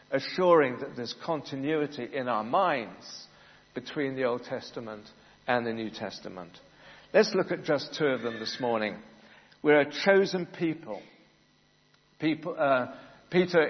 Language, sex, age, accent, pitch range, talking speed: English, male, 60-79, British, 130-175 Hz, 135 wpm